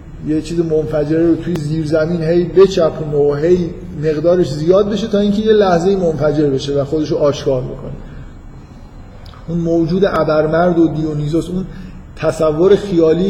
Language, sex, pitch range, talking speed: Persian, male, 145-165 Hz, 145 wpm